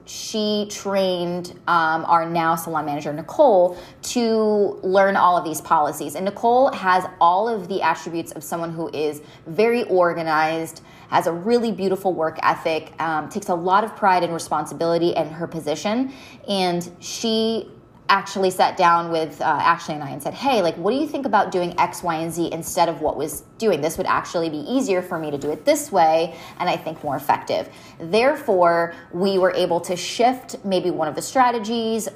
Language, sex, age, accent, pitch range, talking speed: English, female, 20-39, American, 165-210 Hz, 190 wpm